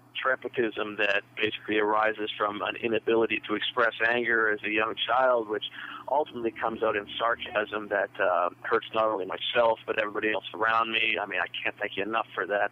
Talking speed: 190 wpm